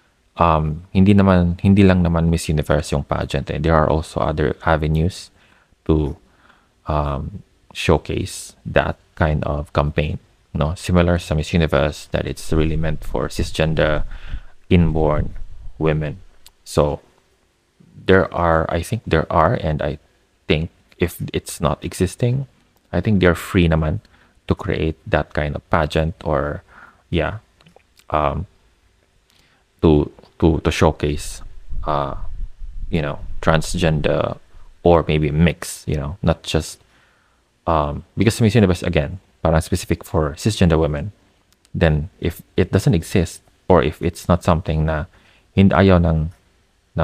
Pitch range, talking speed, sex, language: 80-95 Hz, 130 wpm, male, Filipino